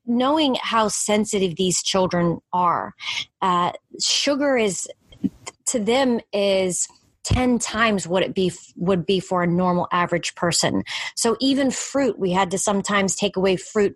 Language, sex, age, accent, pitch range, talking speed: English, female, 30-49, American, 175-210 Hz, 155 wpm